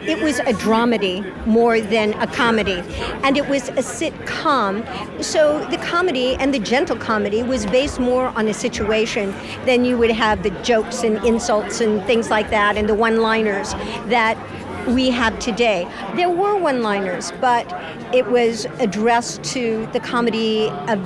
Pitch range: 220-255 Hz